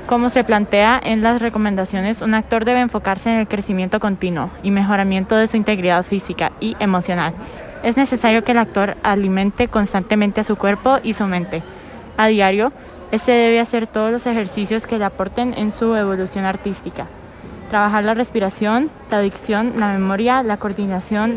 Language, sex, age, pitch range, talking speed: English, female, 20-39, 195-225 Hz, 165 wpm